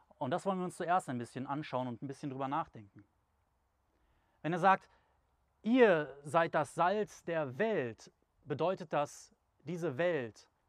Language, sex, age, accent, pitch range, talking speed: German, male, 30-49, German, 145-210 Hz, 150 wpm